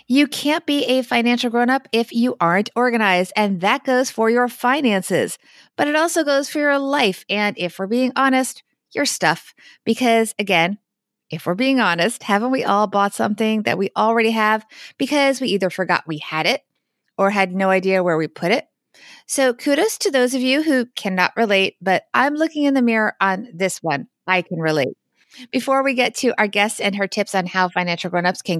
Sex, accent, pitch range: female, American, 200-265 Hz